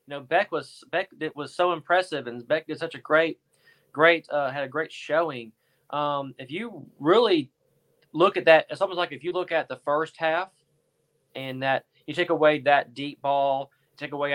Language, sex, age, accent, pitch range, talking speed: English, male, 20-39, American, 135-160 Hz, 205 wpm